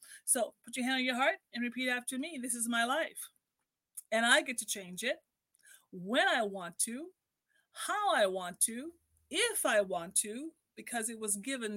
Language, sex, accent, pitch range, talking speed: English, female, American, 205-280 Hz, 190 wpm